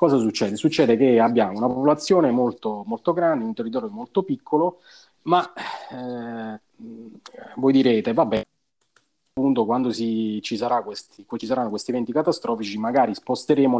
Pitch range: 120-170 Hz